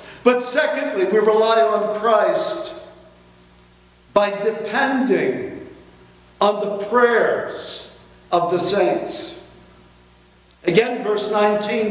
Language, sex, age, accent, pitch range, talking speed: English, male, 50-69, American, 205-245 Hz, 85 wpm